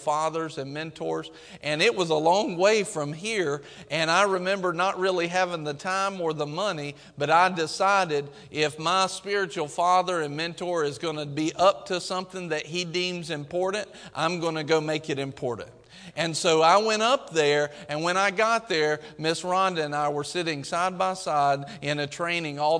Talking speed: 190 wpm